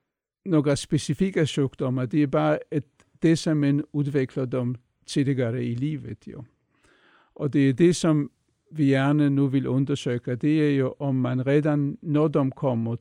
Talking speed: 155 wpm